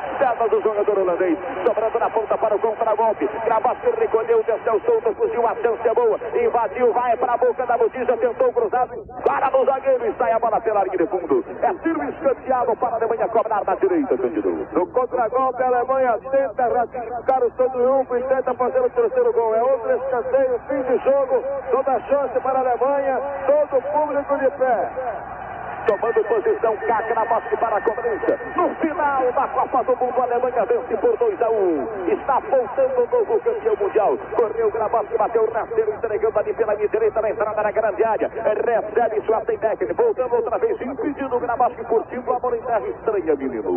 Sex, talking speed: male, 175 wpm